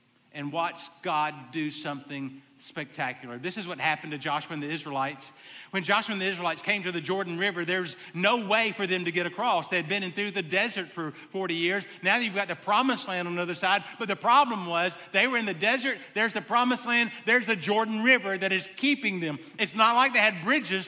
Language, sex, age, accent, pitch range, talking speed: English, male, 50-69, American, 170-225 Hz, 225 wpm